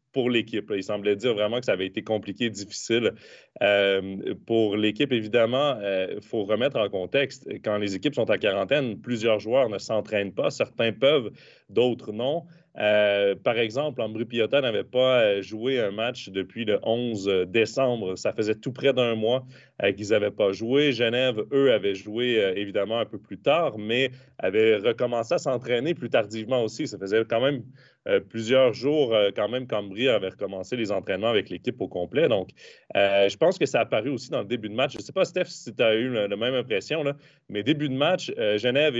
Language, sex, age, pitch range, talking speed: French, male, 30-49, 110-135 Hz, 200 wpm